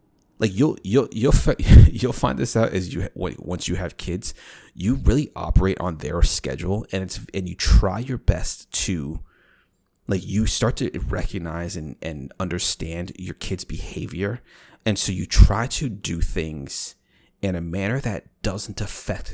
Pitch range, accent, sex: 80-100 Hz, American, male